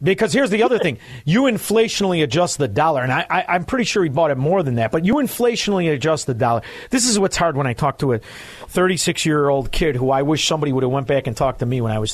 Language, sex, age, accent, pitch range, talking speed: English, male, 40-59, American, 130-205 Hz, 265 wpm